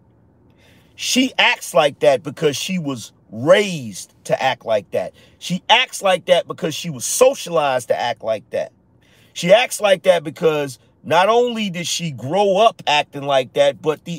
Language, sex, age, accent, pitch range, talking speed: English, male, 40-59, American, 125-180 Hz, 170 wpm